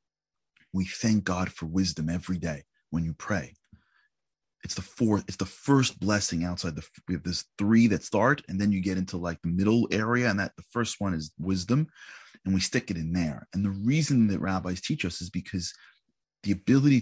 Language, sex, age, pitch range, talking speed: English, male, 30-49, 85-110 Hz, 205 wpm